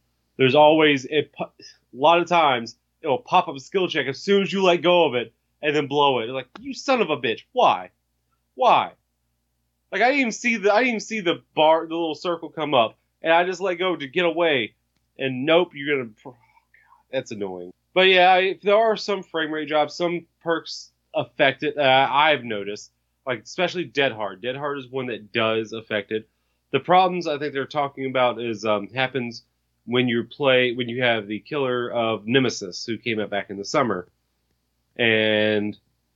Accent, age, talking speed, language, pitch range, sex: American, 30-49, 200 wpm, English, 105-170 Hz, male